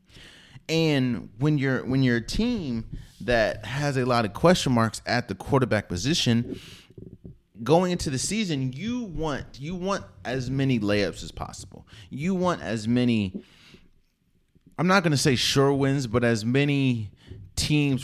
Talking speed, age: 150 wpm, 20-39